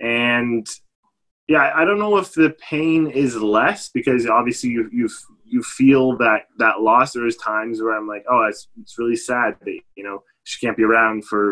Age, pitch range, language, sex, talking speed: 20-39, 105-125 Hz, English, male, 195 wpm